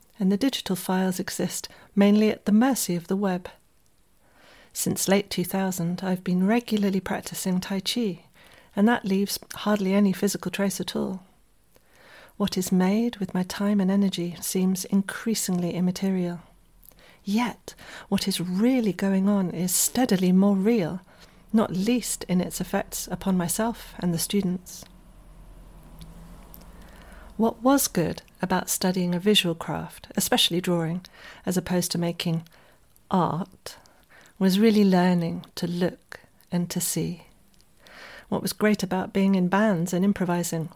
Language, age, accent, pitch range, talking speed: English, 40-59, British, 175-205 Hz, 135 wpm